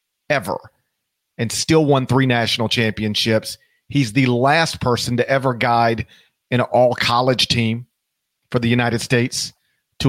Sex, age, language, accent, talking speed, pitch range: male, 40-59, English, American, 130 wpm, 120-145 Hz